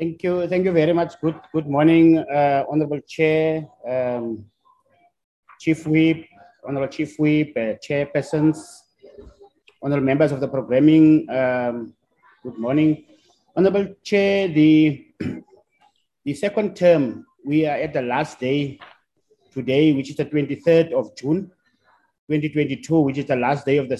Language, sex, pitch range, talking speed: English, male, 140-170 Hz, 140 wpm